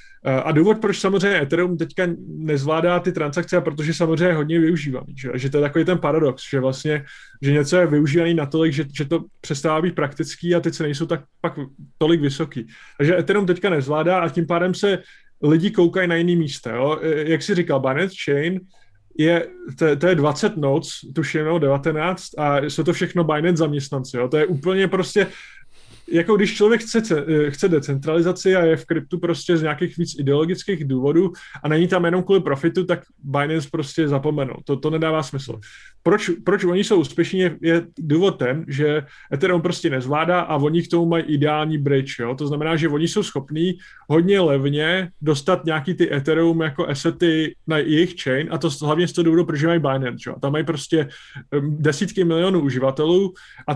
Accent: native